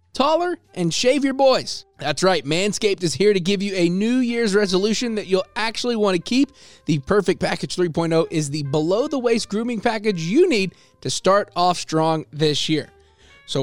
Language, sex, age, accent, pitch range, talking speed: English, male, 20-39, American, 165-230 Hz, 190 wpm